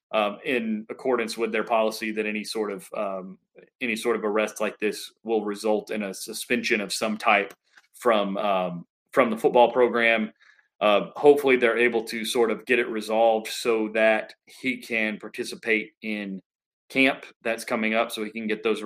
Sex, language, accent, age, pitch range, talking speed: male, English, American, 30-49, 110-125 Hz, 180 wpm